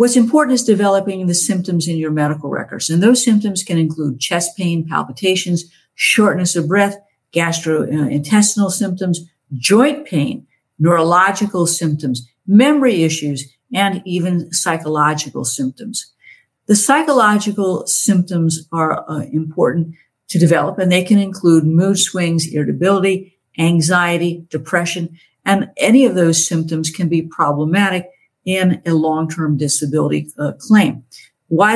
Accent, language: American, English